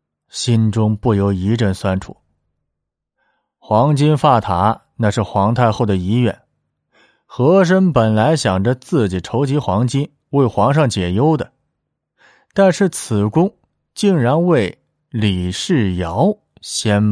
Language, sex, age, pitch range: Chinese, male, 30-49, 100-140 Hz